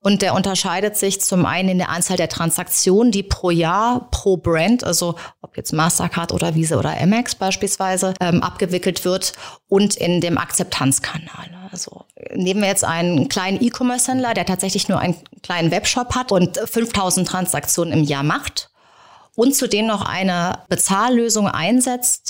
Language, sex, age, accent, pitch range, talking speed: German, female, 30-49, German, 175-220 Hz, 155 wpm